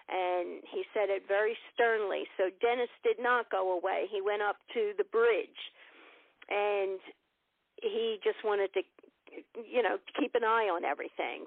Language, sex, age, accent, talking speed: English, female, 50-69, American, 155 wpm